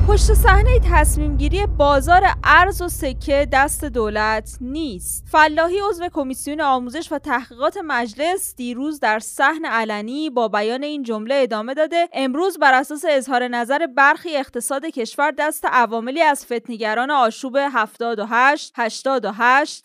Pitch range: 235-310 Hz